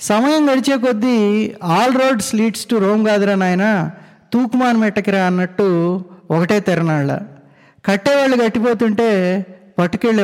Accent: Indian